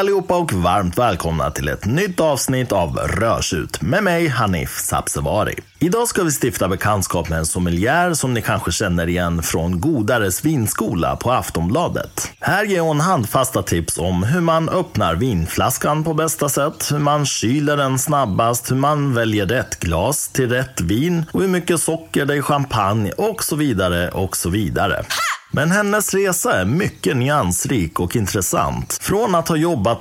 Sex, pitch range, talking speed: male, 90-150 Hz, 165 wpm